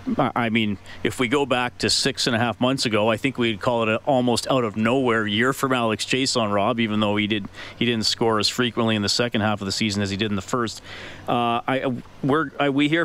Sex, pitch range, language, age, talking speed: male, 105-120 Hz, English, 40-59, 260 wpm